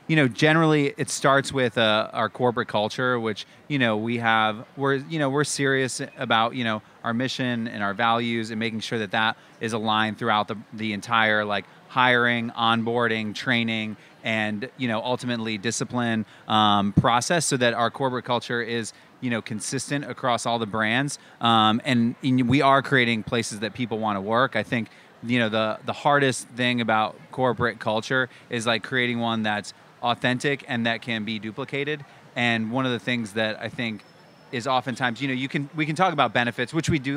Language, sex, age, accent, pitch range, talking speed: English, male, 30-49, American, 110-130 Hz, 190 wpm